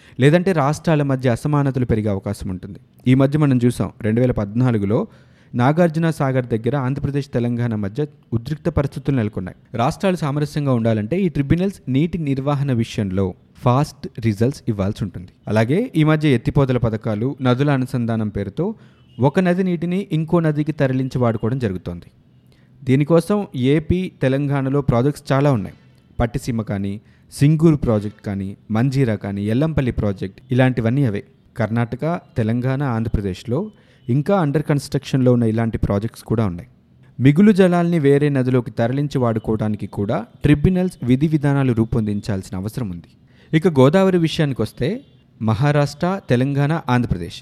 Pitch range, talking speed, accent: 115-150 Hz, 125 wpm, native